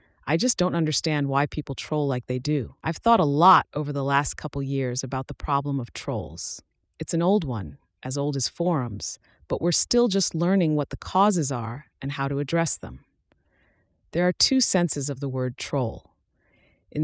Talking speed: 195 wpm